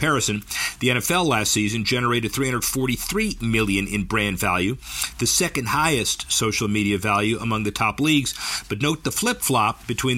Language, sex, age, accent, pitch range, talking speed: English, male, 50-69, American, 105-125 Hz, 155 wpm